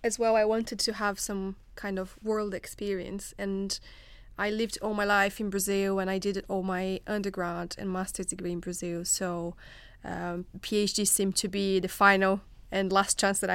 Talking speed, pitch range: 185 wpm, 185-205 Hz